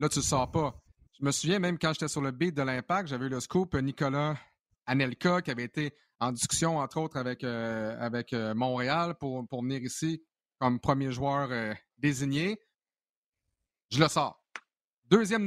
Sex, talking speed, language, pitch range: male, 185 wpm, French, 135-170 Hz